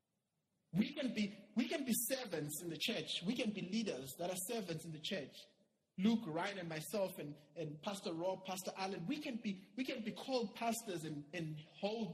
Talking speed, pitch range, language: 205 wpm, 165-215 Hz, English